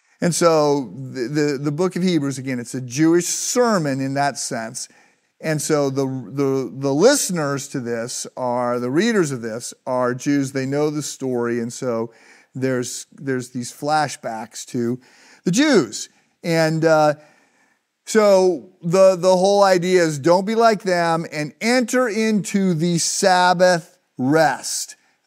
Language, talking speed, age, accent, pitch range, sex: English, 145 wpm, 50-69, American, 135-175 Hz, male